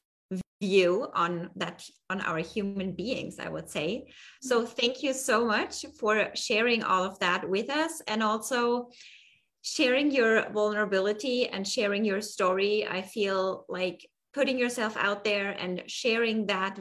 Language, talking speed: English, 145 wpm